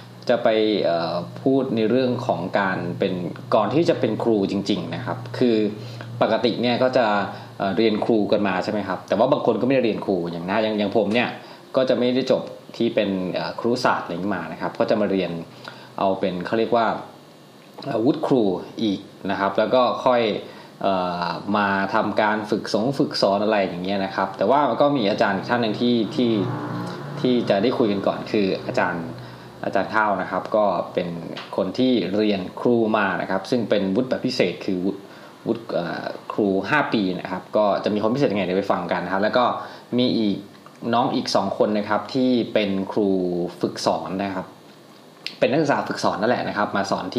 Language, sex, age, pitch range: Thai, male, 20-39, 95-115 Hz